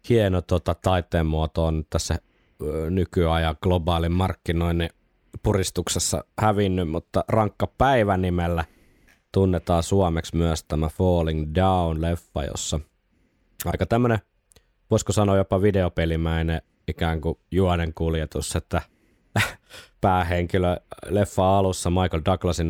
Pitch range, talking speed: 80-95 Hz, 105 wpm